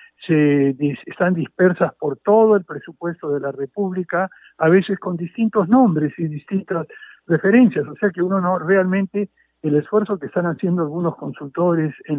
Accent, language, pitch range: Argentinian, Spanish, 145-190 Hz